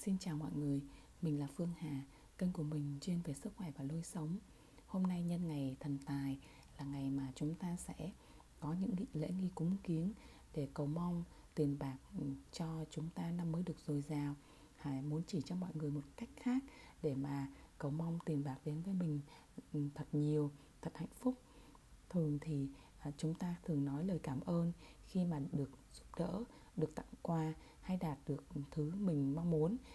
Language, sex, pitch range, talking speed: Vietnamese, female, 145-180 Hz, 190 wpm